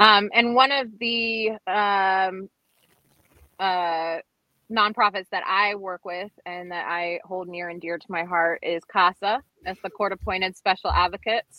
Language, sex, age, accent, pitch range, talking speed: English, female, 20-39, American, 180-220 Hz, 155 wpm